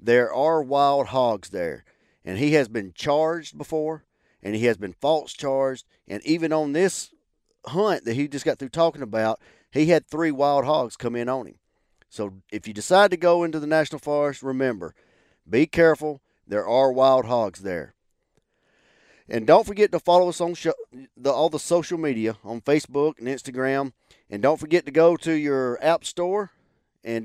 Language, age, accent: English, 40-59, American